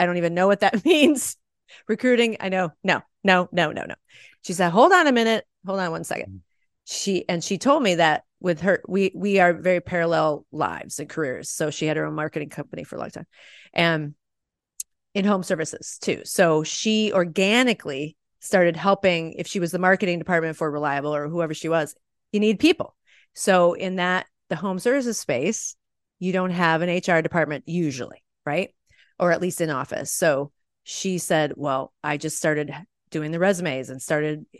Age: 30-49